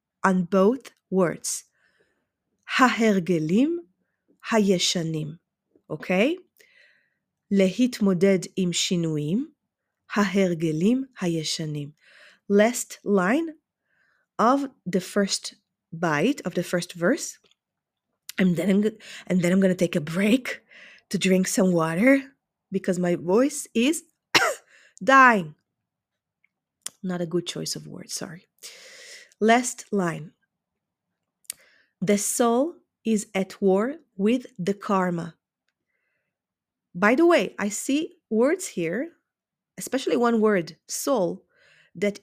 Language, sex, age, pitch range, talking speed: Hebrew, female, 30-49, 180-235 Hz, 90 wpm